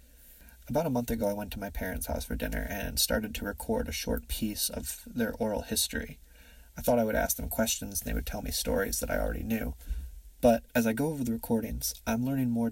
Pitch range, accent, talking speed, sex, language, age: 70-115 Hz, American, 235 wpm, male, English, 30-49